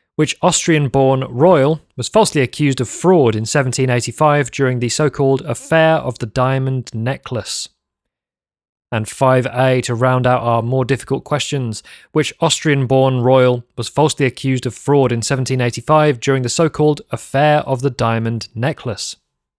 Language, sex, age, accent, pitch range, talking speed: English, male, 30-49, British, 120-150 Hz, 140 wpm